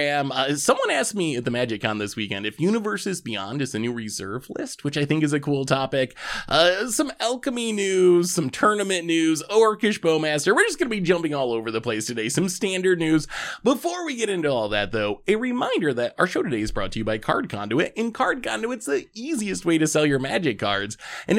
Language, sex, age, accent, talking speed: English, male, 20-39, American, 225 wpm